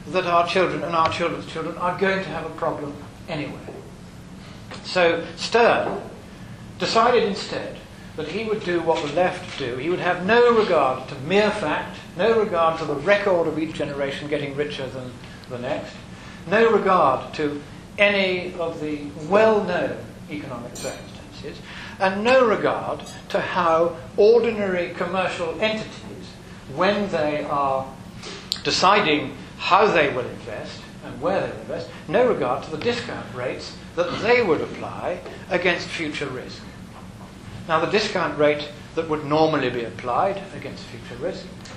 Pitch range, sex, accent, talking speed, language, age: 150-200 Hz, male, British, 145 wpm, Italian, 60-79